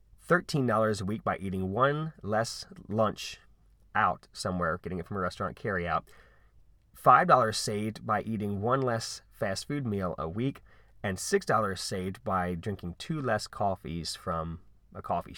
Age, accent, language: 30-49, American, English